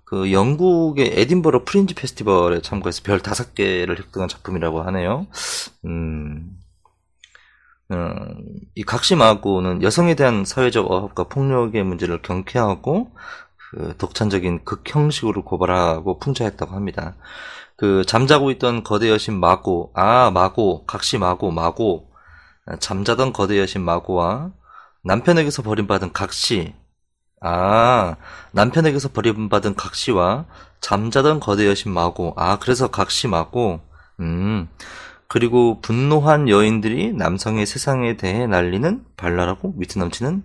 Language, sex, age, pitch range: Korean, male, 30-49, 90-125 Hz